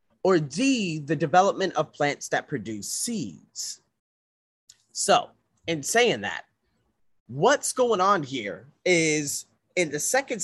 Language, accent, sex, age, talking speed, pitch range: English, American, male, 30-49, 120 wpm, 145-190 Hz